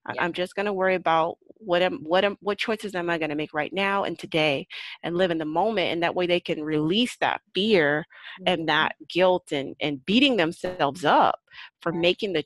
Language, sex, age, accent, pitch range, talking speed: English, female, 30-49, American, 165-205 Hz, 215 wpm